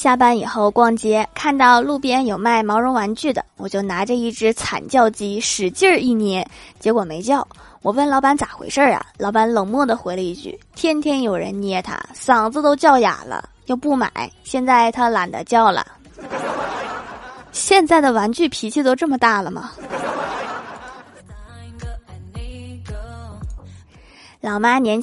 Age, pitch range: 20-39, 205-270 Hz